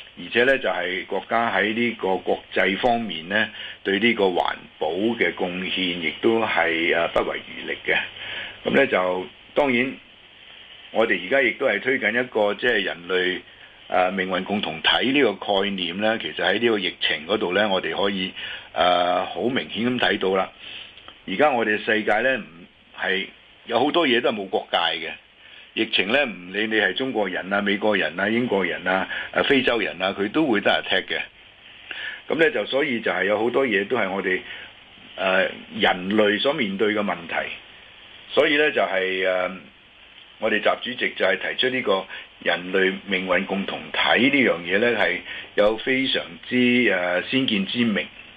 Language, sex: Chinese, male